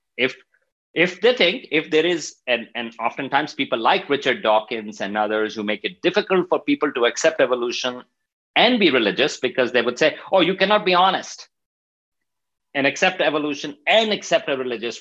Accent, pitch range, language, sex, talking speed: Indian, 115-175 Hz, English, male, 175 wpm